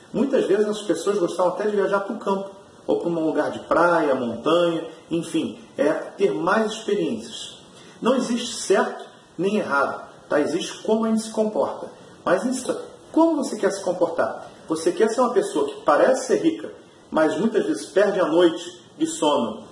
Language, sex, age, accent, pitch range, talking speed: Portuguese, male, 40-59, Brazilian, 165-220 Hz, 175 wpm